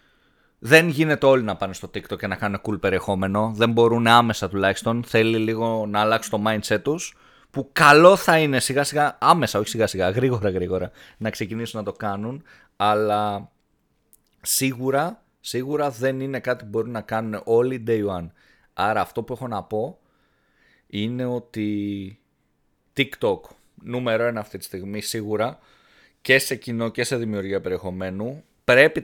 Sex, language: male, Greek